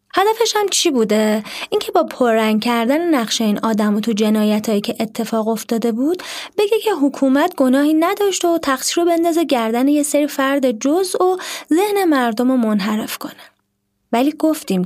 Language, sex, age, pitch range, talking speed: Persian, female, 20-39, 230-330 Hz, 160 wpm